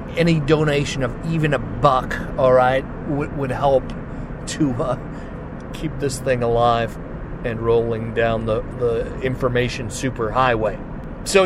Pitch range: 130-170 Hz